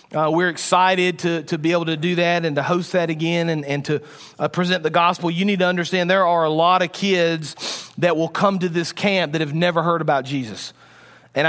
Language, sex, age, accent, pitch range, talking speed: English, male, 40-59, American, 105-180 Hz, 235 wpm